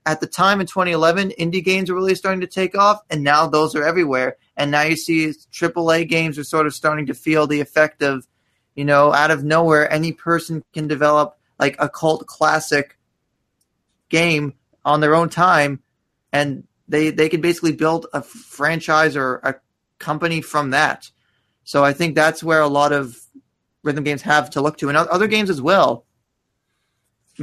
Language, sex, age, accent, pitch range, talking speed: English, male, 20-39, American, 145-170 Hz, 185 wpm